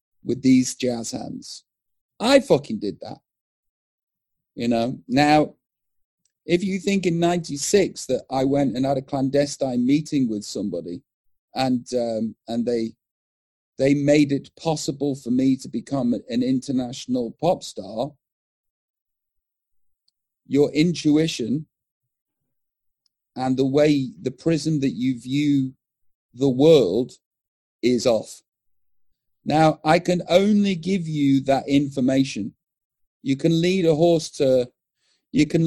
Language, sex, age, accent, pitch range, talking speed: English, male, 40-59, British, 125-165 Hz, 120 wpm